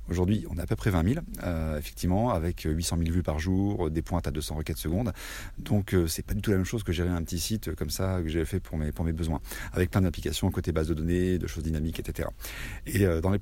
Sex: male